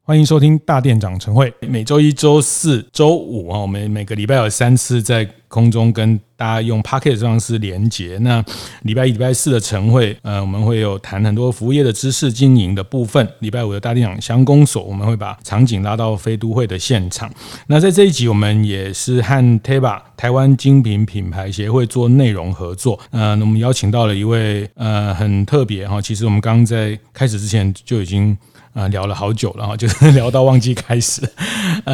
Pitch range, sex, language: 100-125 Hz, male, Chinese